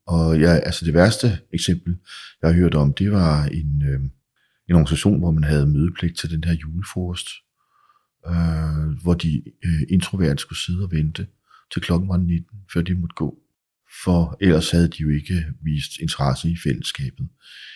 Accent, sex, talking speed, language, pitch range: native, male, 170 wpm, Danish, 75-90 Hz